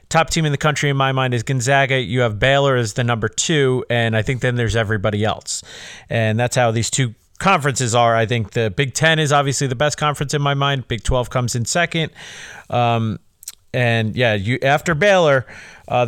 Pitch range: 115-140 Hz